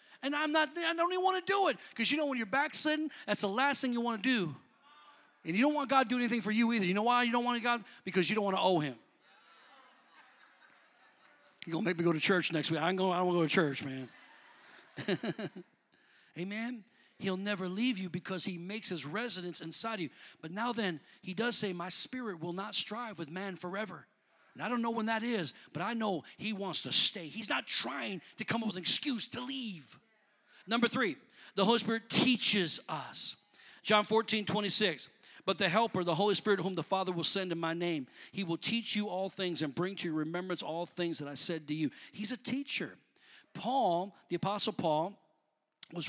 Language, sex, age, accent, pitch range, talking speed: English, male, 40-59, American, 170-230 Hz, 225 wpm